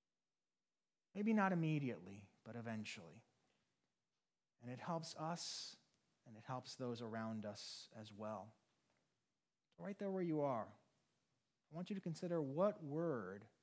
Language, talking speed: English, 130 wpm